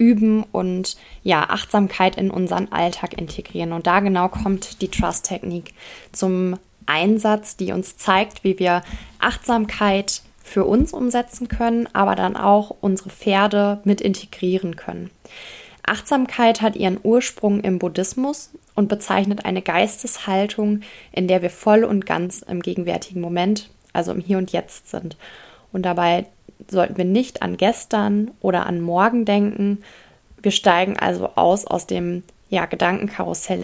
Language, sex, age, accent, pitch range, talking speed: English, female, 20-39, German, 185-225 Hz, 135 wpm